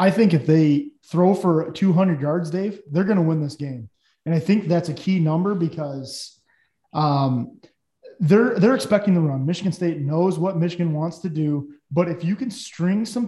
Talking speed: 195 wpm